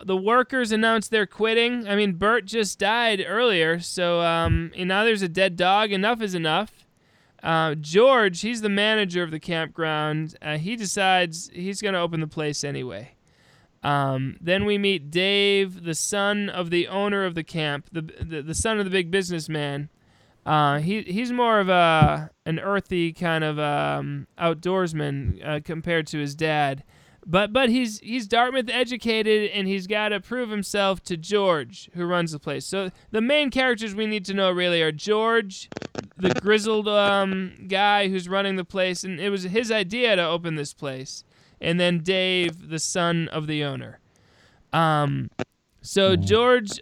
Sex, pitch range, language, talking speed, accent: male, 160-205 Hz, English, 170 wpm, American